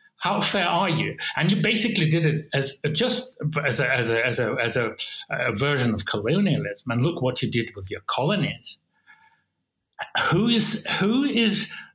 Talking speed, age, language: 175 wpm, 60-79, English